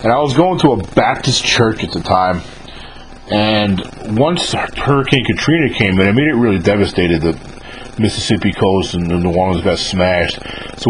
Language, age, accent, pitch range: English, 40-59, American, 95-125 Hz